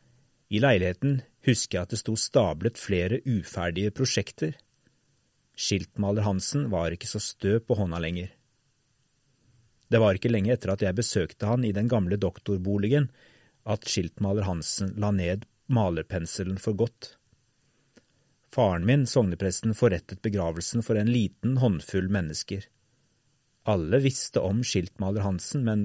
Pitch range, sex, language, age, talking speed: 95-120 Hz, male, English, 30-49, 130 wpm